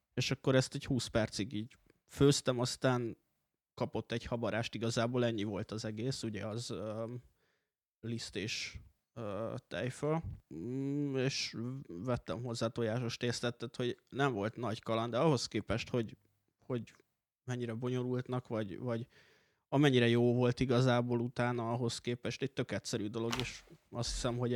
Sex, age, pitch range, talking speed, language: male, 20-39, 115-125 Hz, 140 wpm, Hungarian